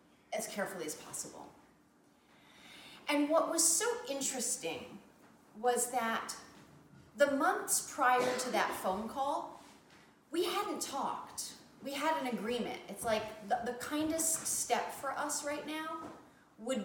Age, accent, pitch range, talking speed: 30-49, American, 200-295 Hz, 130 wpm